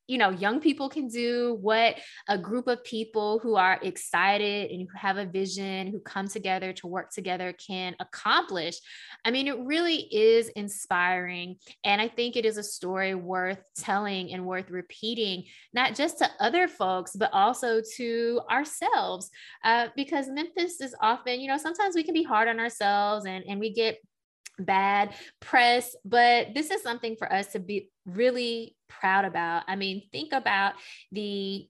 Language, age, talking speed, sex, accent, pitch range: English, 20-39, 170 wpm, female, American, 190-240 Hz